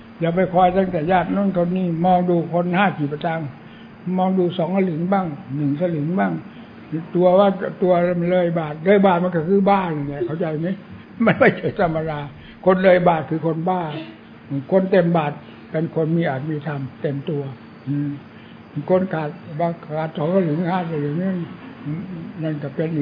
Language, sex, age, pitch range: English, male, 60-79, 160-190 Hz